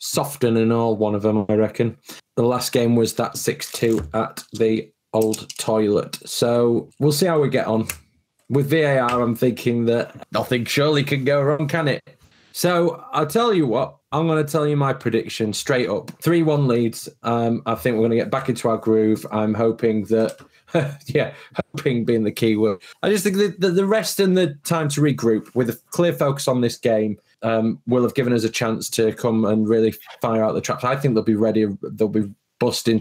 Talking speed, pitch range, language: 210 wpm, 110-140 Hz, English